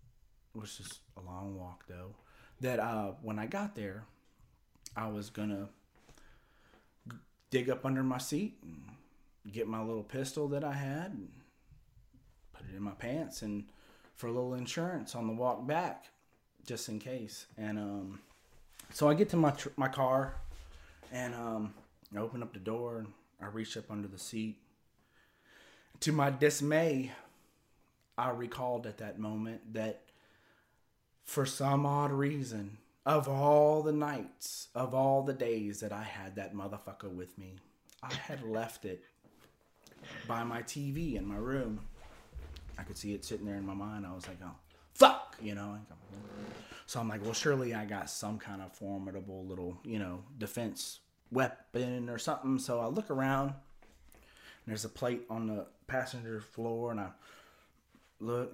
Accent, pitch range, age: American, 100-130 Hz, 30-49